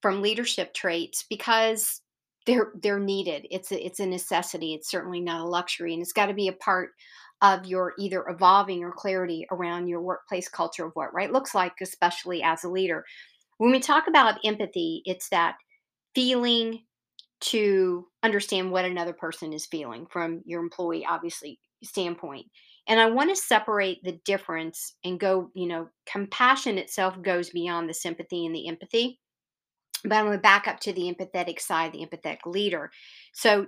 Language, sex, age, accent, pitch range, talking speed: English, female, 50-69, American, 175-215 Hz, 175 wpm